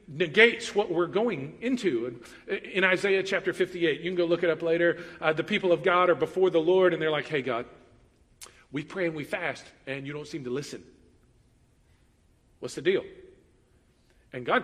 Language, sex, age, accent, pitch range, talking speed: English, male, 40-59, American, 170-225 Hz, 190 wpm